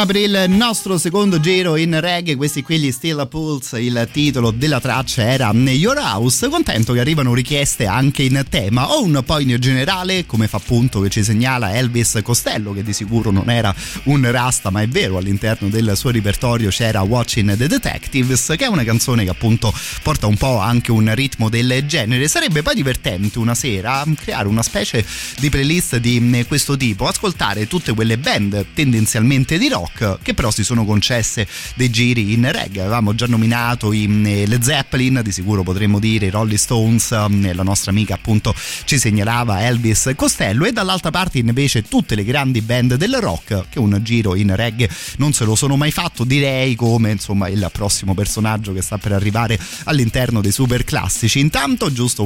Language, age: Italian, 30-49